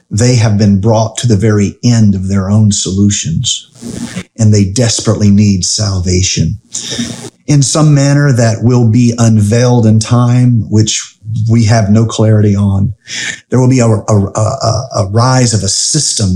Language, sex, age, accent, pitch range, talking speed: English, male, 40-59, American, 105-120 Hz, 150 wpm